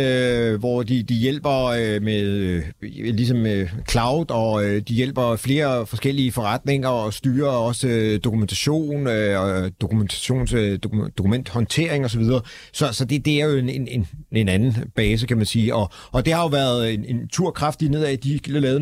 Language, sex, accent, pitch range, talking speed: Danish, male, native, 110-135 Hz, 175 wpm